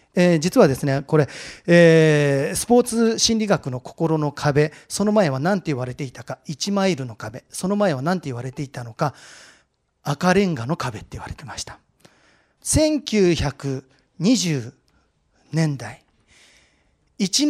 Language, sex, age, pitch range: Japanese, male, 40-59, 140-225 Hz